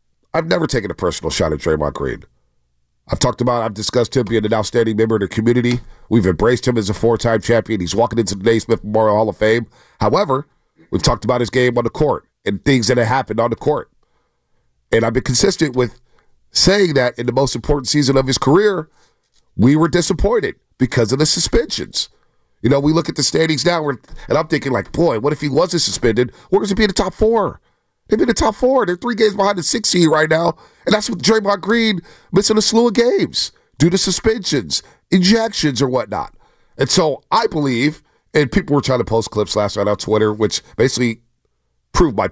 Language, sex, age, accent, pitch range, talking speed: English, male, 40-59, American, 110-155 Hz, 215 wpm